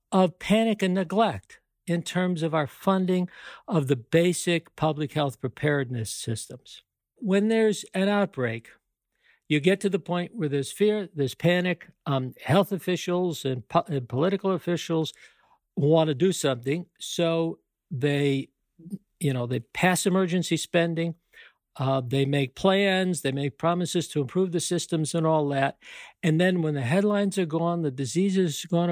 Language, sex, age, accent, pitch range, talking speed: English, male, 60-79, American, 145-185 Hz, 155 wpm